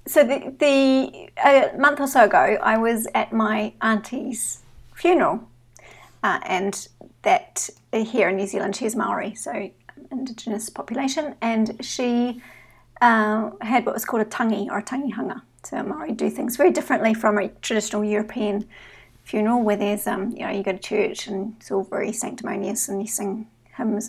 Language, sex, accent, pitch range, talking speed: English, female, Australian, 205-255 Hz, 165 wpm